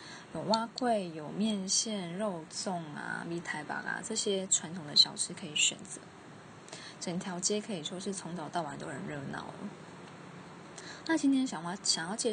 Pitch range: 170-200 Hz